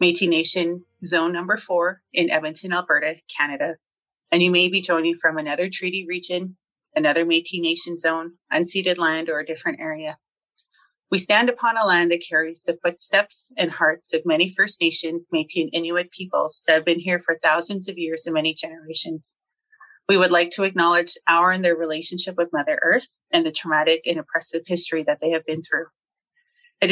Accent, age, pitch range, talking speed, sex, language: American, 30-49, 165-190 Hz, 185 wpm, female, English